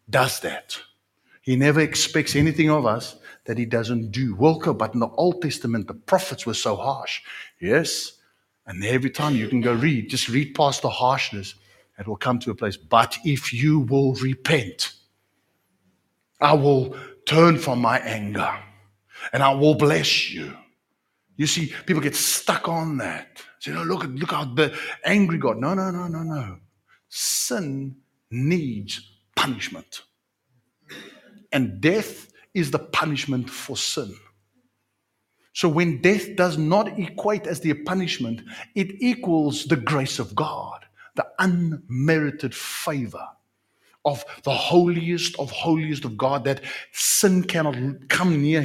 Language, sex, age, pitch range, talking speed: English, male, 60-79, 115-165 Hz, 145 wpm